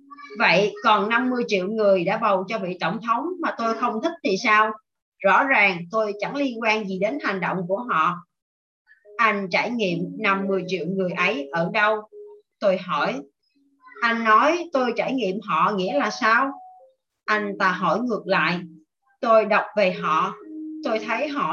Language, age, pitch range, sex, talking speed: Vietnamese, 20-39, 195-275 Hz, female, 170 wpm